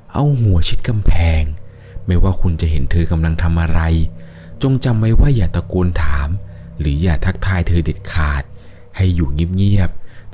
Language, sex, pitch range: Thai, male, 80-100 Hz